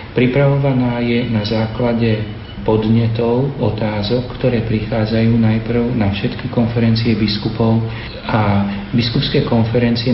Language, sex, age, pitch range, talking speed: Slovak, male, 40-59, 105-115 Hz, 95 wpm